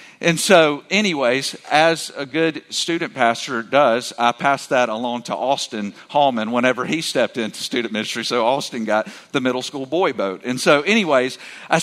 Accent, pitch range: American, 135-185 Hz